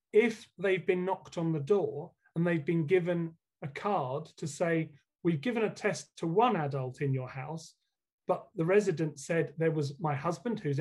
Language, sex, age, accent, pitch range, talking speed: English, male, 30-49, British, 150-190 Hz, 190 wpm